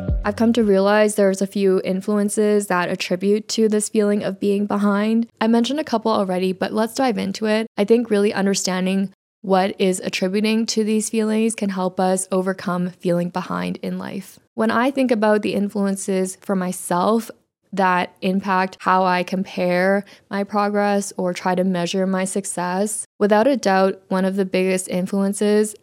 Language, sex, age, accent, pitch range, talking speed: English, female, 10-29, American, 185-215 Hz, 170 wpm